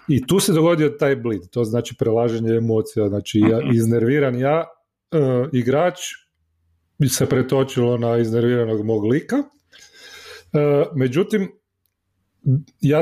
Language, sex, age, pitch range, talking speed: Croatian, male, 30-49, 120-155 Hz, 115 wpm